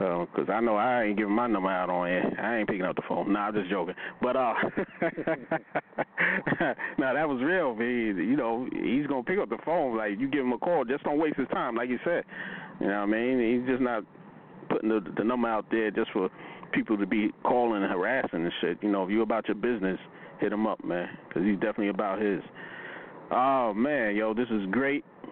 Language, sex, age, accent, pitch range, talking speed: English, male, 30-49, American, 105-120 Hz, 235 wpm